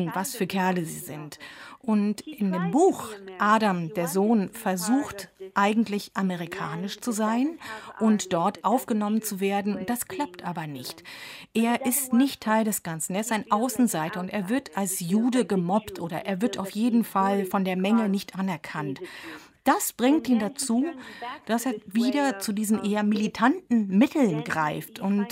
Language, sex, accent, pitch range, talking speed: German, female, German, 190-230 Hz, 160 wpm